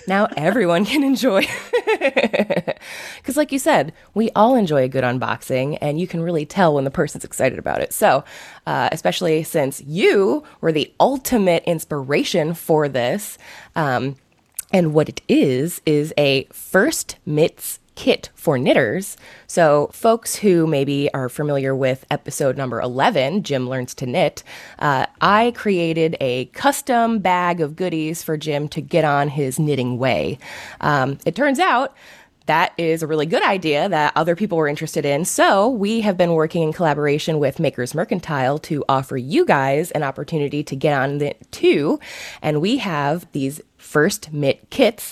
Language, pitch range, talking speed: English, 140-190 Hz, 160 wpm